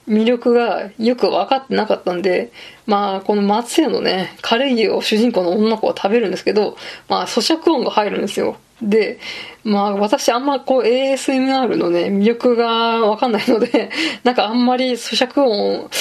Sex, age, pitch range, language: female, 20-39, 205-250 Hz, Japanese